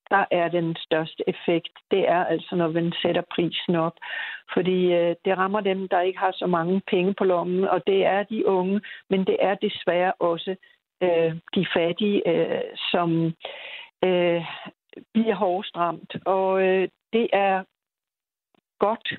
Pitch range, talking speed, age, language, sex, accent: 170-195 Hz, 155 wpm, 60-79, Danish, female, native